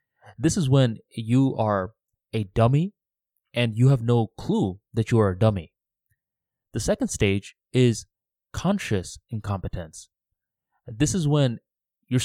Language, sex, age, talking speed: English, male, 20-39, 130 wpm